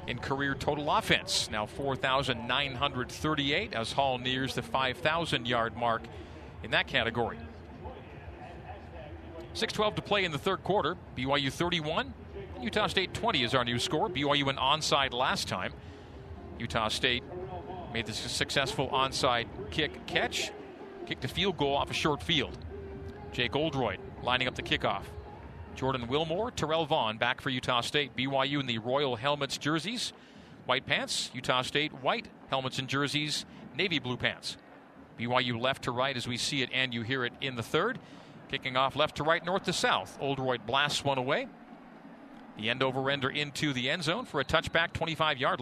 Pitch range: 120-155 Hz